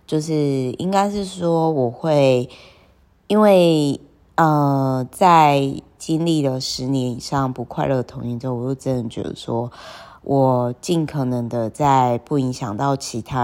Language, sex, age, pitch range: Chinese, female, 20-39, 125-150 Hz